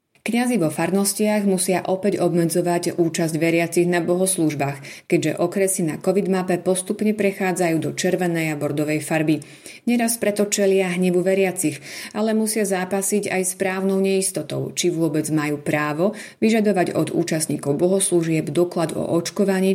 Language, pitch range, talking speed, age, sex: Slovak, 160-195 Hz, 135 wpm, 30-49, female